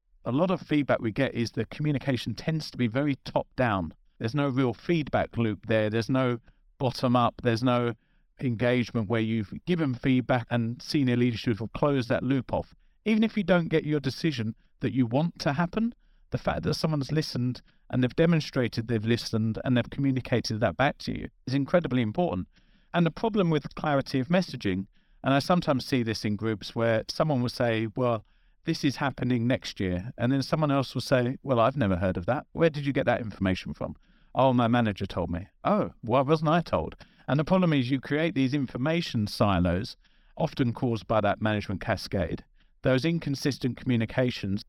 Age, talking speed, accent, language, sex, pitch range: 40-59, 190 wpm, British, English, male, 115-145 Hz